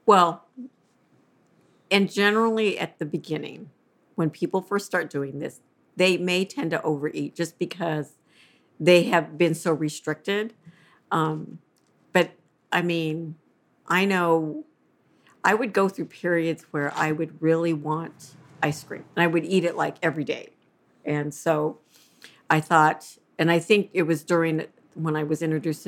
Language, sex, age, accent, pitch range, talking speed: English, female, 50-69, American, 155-200 Hz, 150 wpm